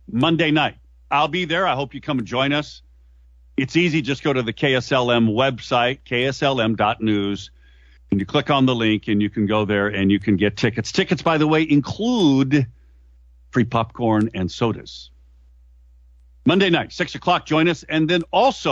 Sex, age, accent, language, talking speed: male, 50-69, American, English, 175 wpm